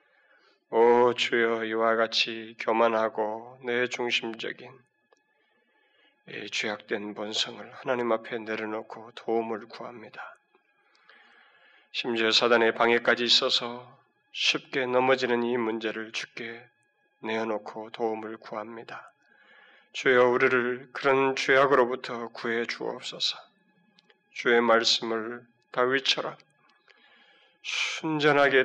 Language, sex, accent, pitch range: Korean, male, native, 115-150 Hz